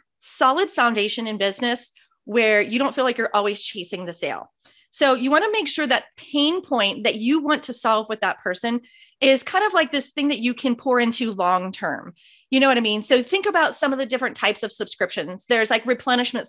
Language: English